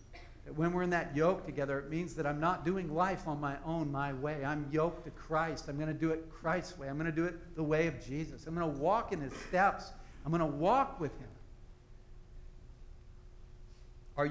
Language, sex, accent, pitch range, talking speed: English, male, American, 130-165 Hz, 220 wpm